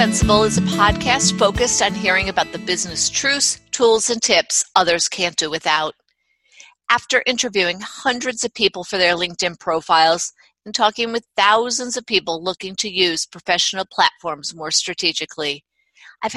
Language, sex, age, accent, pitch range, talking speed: English, female, 50-69, American, 170-220 Hz, 145 wpm